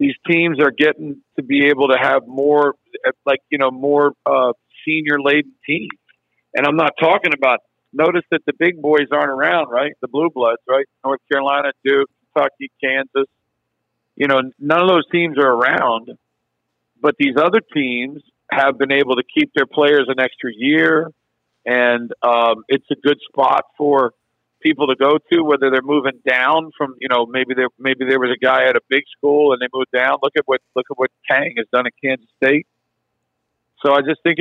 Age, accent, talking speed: 50-69, American, 190 wpm